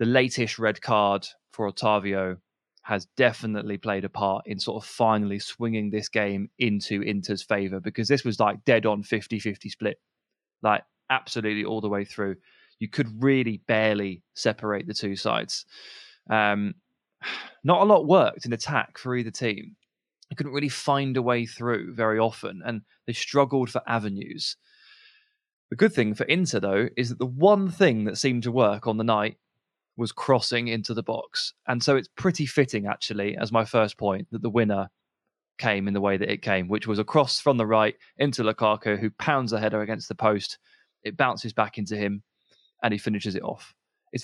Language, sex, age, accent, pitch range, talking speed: English, male, 20-39, British, 105-130 Hz, 185 wpm